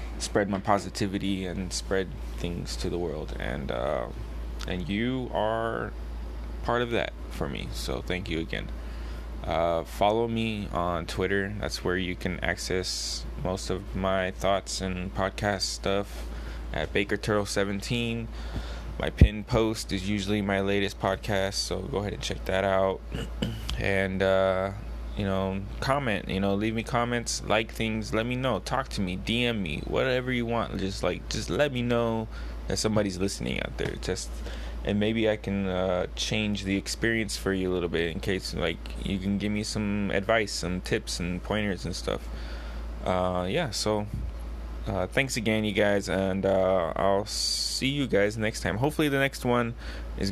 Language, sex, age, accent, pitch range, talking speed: English, male, 20-39, American, 85-105 Hz, 170 wpm